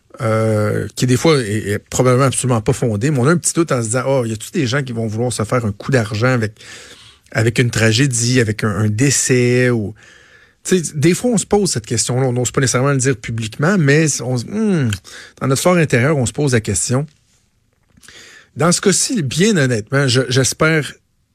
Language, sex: French, male